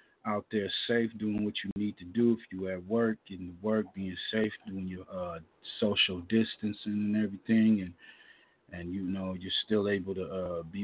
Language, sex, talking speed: English, male, 195 wpm